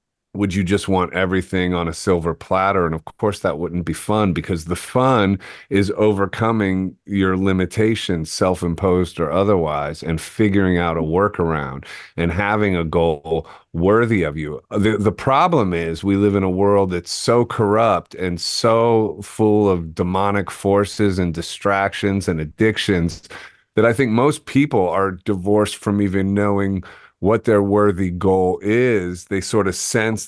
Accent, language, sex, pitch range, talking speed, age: American, English, male, 90-100 Hz, 155 wpm, 30-49